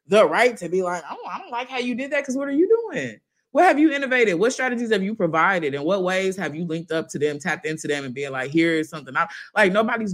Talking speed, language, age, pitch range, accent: 280 wpm, English, 20-39, 160-225 Hz, American